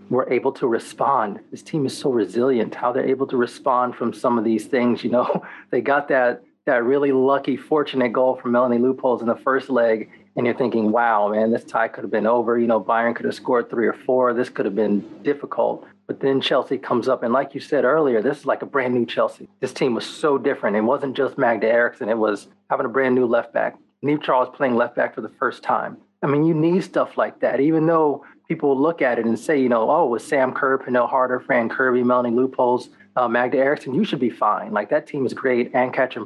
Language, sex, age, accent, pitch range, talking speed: English, male, 30-49, American, 125-155 Hz, 235 wpm